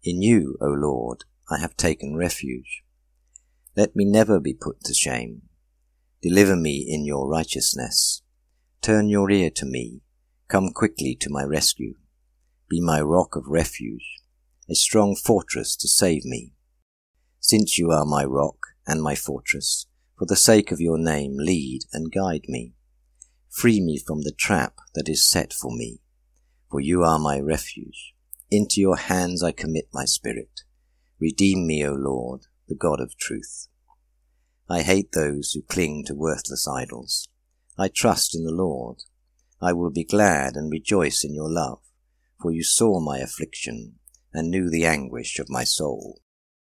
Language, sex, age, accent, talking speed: English, male, 50-69, British, 160 wpm